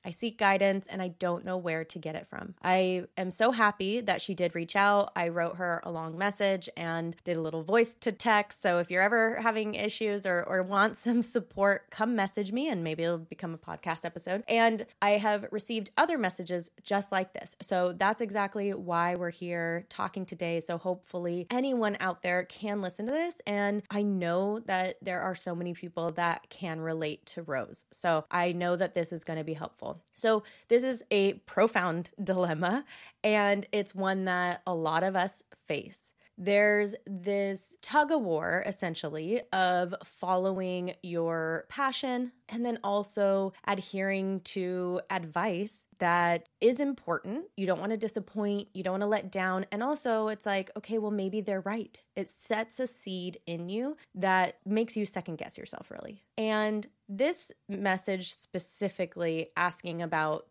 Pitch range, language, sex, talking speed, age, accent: 175-210 Hz, English, female, 175 wpm, 20-39, American